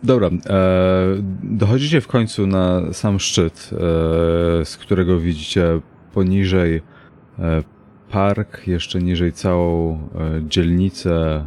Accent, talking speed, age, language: native, 105 wpm, 30-49, Polish